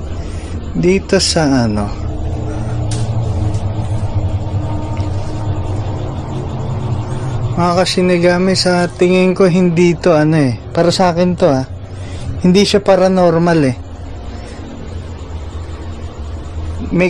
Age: 20-39